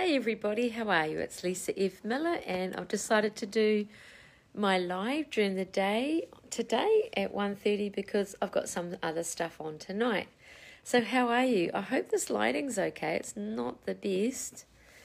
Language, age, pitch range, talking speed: English, 40-59, 170-220 Hz, 170 wpm